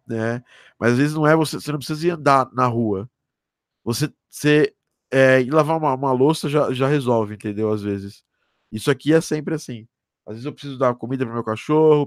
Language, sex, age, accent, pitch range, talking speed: Portuguese, male, 20-39, Brazilian, 120-145 Hz, 210 wpm